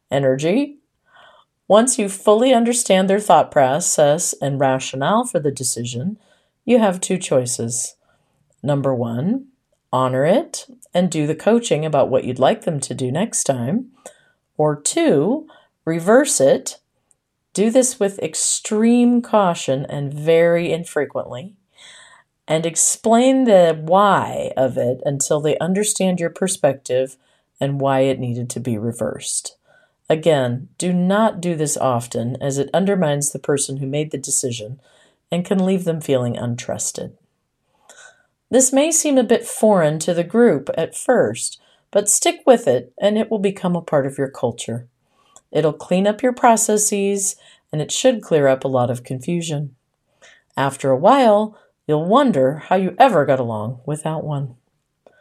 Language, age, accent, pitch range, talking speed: English, 40-59, American, 135-215 Hz, 145 wpm